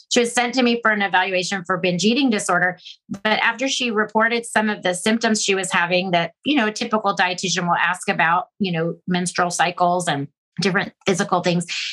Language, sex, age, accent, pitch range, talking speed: English, female, 30-49, American, 175-210 Hz, 200 wpm